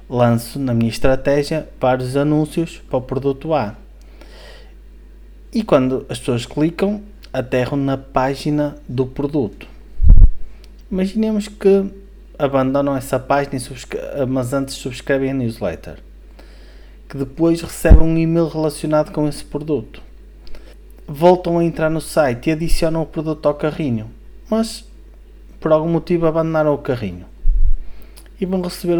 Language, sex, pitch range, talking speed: Portuguese, male, 130-160 Hz, 130 wpm